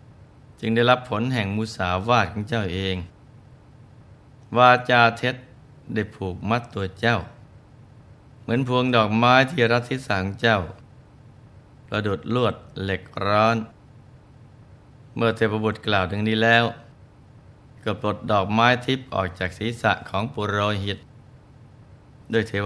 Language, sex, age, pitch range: Thai, male, 20-39, 105-125 Hz